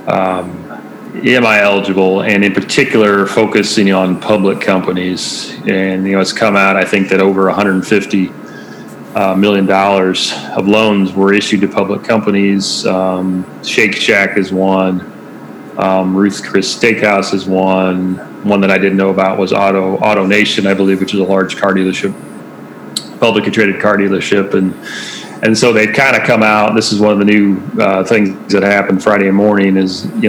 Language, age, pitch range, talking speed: English, 30-49, 95-105 Hz, 170 wpm